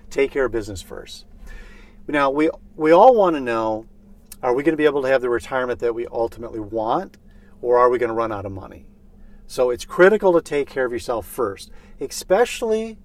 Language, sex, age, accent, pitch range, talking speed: English, male, 40-59, American, 120-195 Hz, 195 wpm